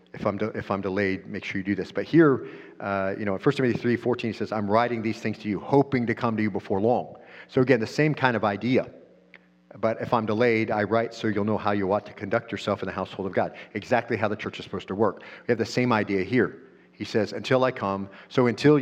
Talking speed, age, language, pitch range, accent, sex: 265 wpm, 50-69, English, 100-125 Hz, American, male